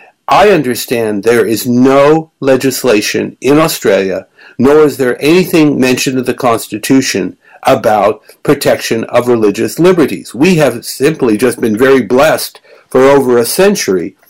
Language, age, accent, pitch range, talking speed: English, 60-79, American, 125-160 Hz, 135 wpm